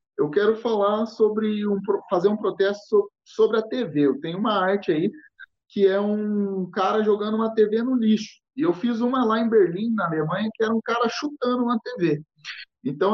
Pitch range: 170-235 Hz